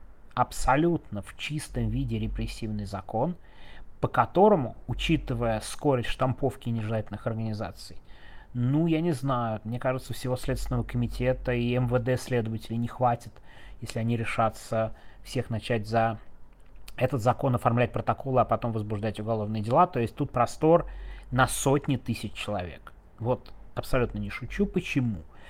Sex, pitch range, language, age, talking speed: male, 110-130 Hz, Russian, 30-49, 130 wpm